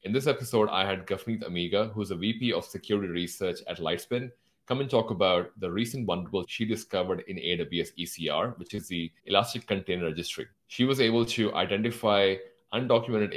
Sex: male